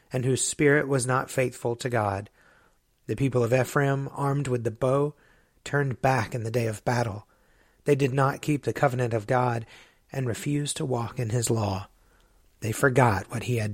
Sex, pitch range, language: male, 115-135 Hz, English